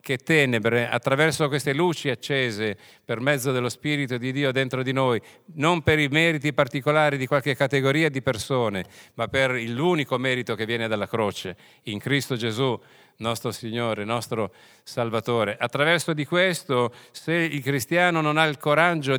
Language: Italian